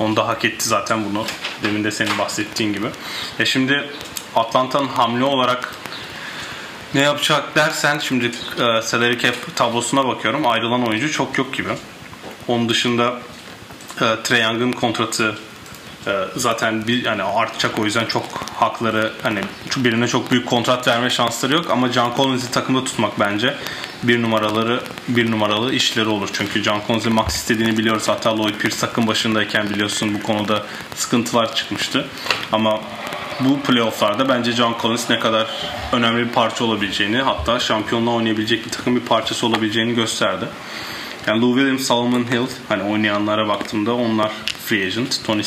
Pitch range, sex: 110-125 Hz, male